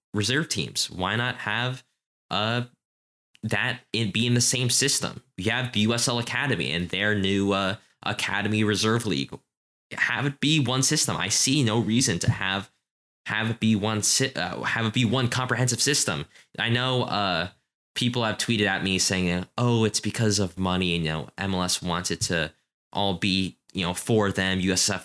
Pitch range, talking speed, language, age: 90-120 Hz, 180 wpm, English, 10-29